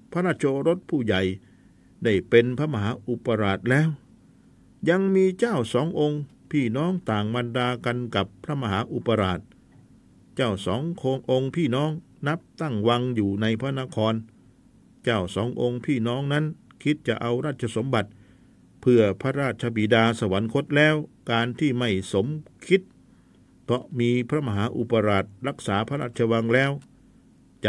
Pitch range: 110-145 Hz